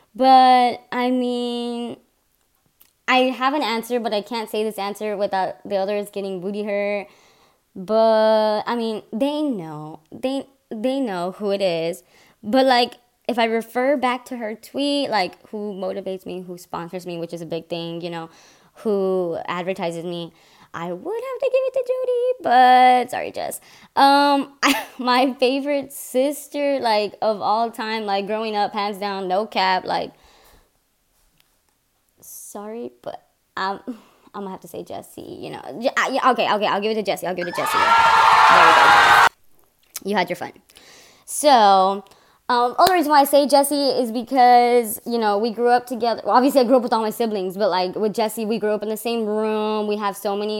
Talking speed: 190 wpm